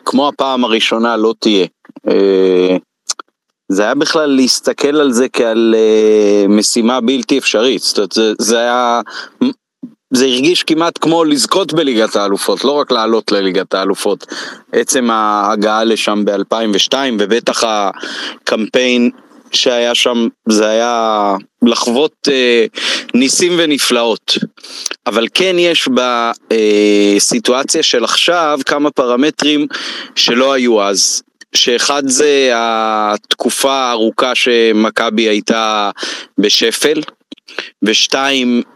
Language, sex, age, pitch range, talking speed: Hebrew, male, 30-49, 110-135 Hz, 100 wpm